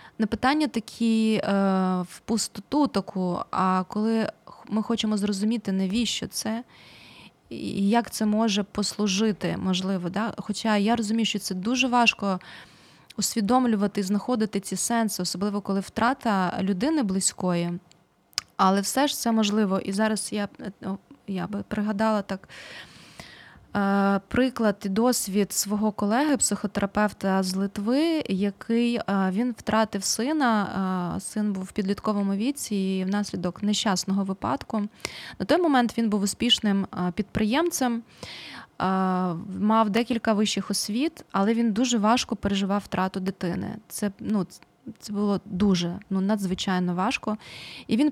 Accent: native